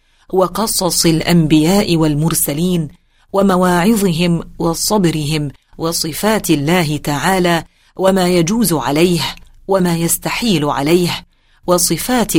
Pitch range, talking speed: 155-185 Hz, 75 wpm